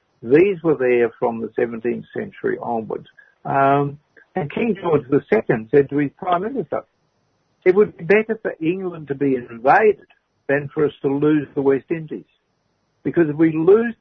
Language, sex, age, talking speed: English, male, 60-79, 165 wpm